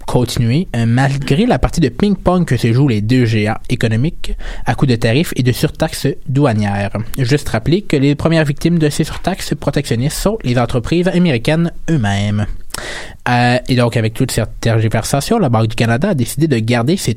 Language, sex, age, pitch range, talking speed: French, male, 20-39, 115-155 Hz, 180 wpm